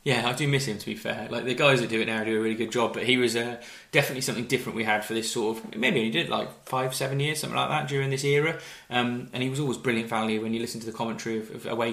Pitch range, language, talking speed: 115-140 Hz, English, 310 wpm